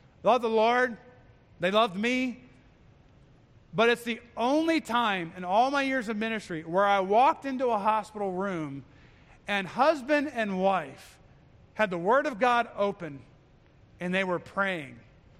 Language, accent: English, American